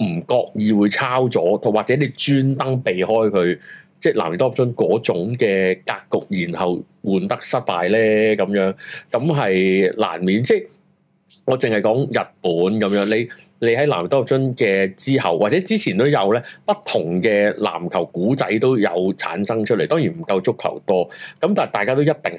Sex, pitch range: male, 95-125 Hz